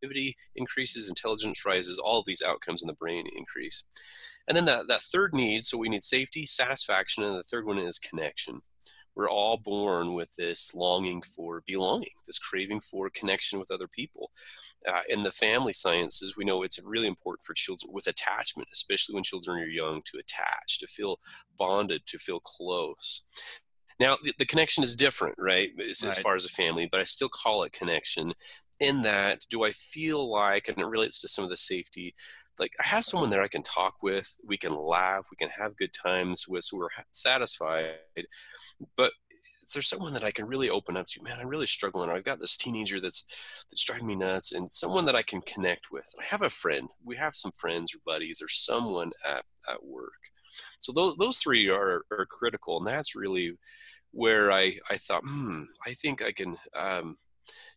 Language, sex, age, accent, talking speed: English, male, 30-49, American, 195 wpm